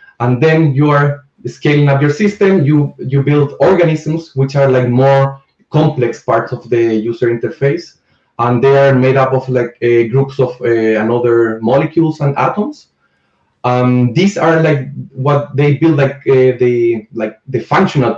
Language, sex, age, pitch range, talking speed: English, male, 20-39, 120-150 Hz, 165 wpm